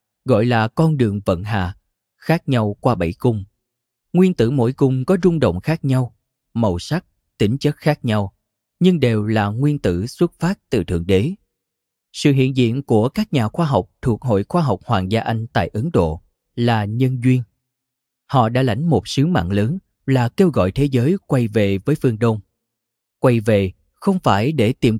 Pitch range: 105-135 Hz